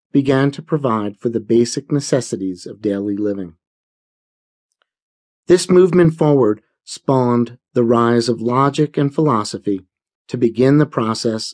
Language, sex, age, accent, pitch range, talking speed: English, male, 40-59, American, 110-145 Hz, 125 wpm